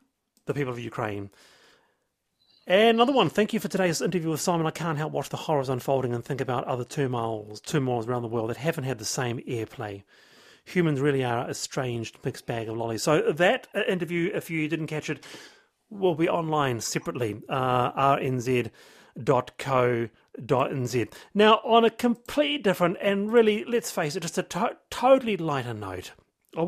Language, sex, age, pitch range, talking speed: English, male, 40-59, 125-190 Hz, 180 wpm